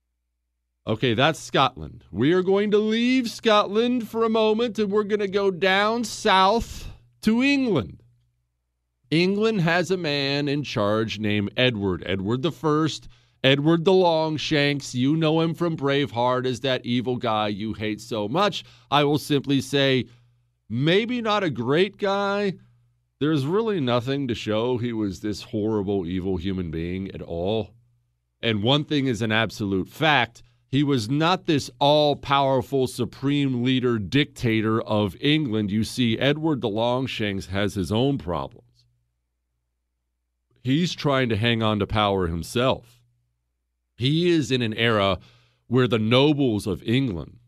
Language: English